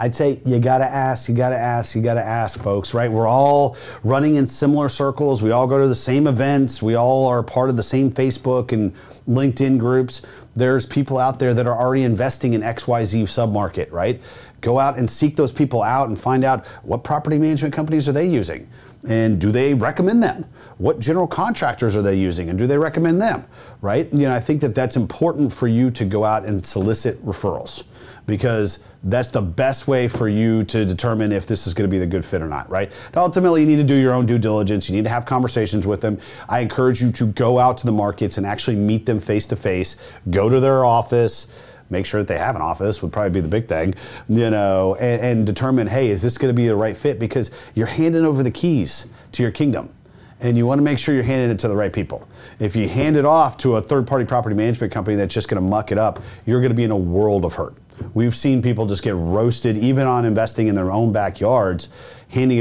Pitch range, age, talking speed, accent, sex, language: 105-130 Hz, 40-59, 235 wpm, American, male, English